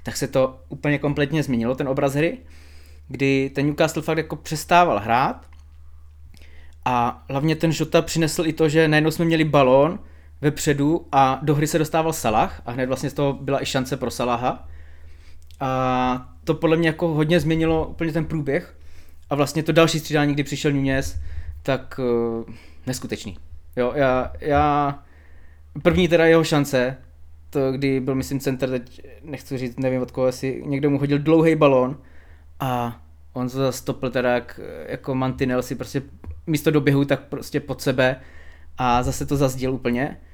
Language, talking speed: Czech, 160 wpm